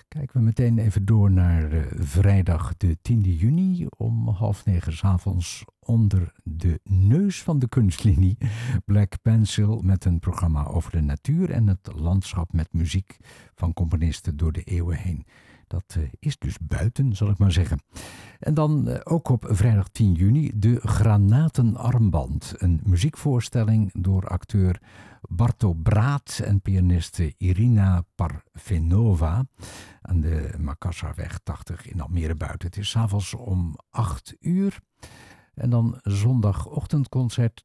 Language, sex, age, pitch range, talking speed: Dutch, male, 60-79, 90-115 Hz, 130 wpm